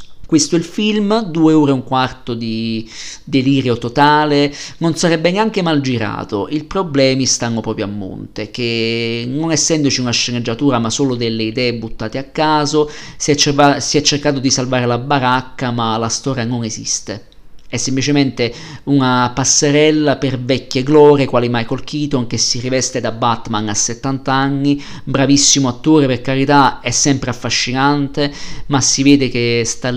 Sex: male